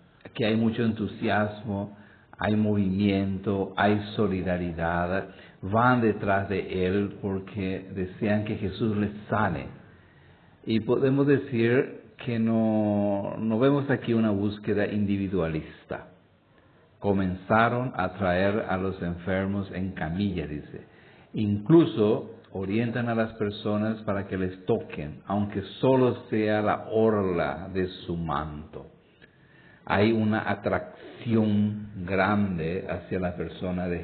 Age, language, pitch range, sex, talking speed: 50-69, English, 95-110 Hz, male, 110 wpm